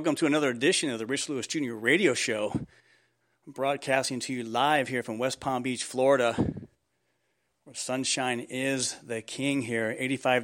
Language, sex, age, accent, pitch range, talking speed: English, male, 40-59, American, 125-140 Hz, 160 wpm